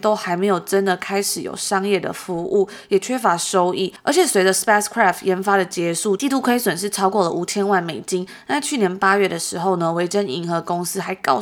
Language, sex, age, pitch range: Chinese, female, 20-39, 185-220 Hz